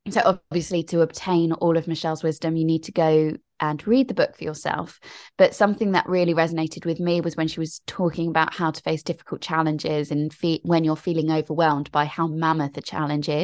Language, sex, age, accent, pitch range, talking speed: English, female, 20-39, British, 155-180 Hz, 210 wpm